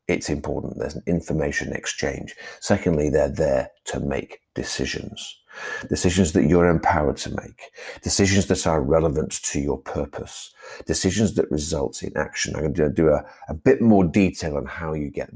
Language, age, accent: English, 50-69, British